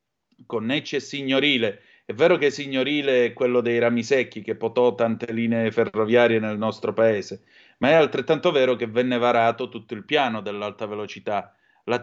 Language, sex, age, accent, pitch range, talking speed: Italian, male, 30-49, native, 115-155 Hz, 170 wpm